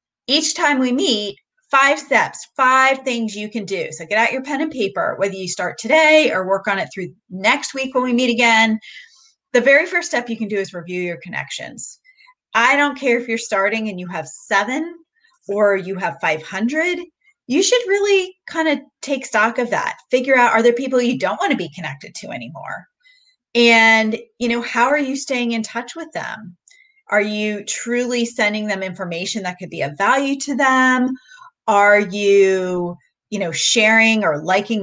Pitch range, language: 200-285 Hz, English